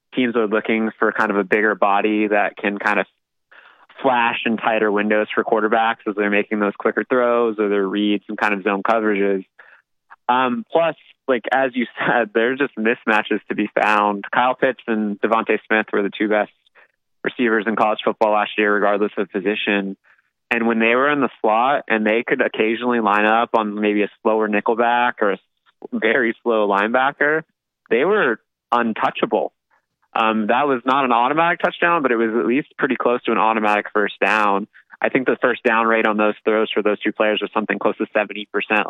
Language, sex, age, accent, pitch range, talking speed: English, male, 20-39, American, 105-120 Hz, 195 wpm